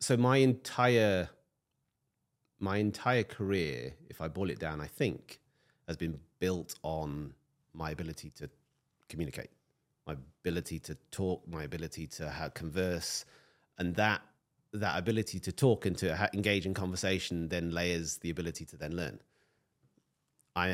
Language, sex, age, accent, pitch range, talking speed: English, male, 30-49, British, 85-105 Hz, 140 wpm